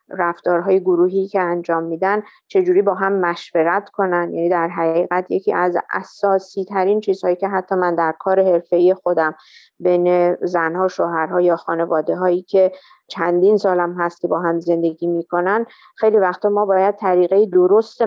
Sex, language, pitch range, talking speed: female, Persian, 170-200 Hz, 155 wpm